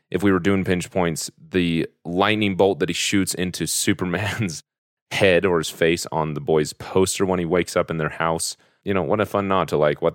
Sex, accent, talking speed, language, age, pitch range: male, American, 225 wpm, English, 30-49, 80-100 Hz